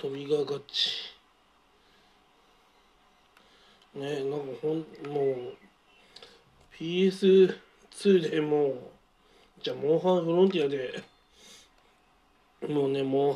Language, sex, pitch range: Japanese, male, 135-200 Hz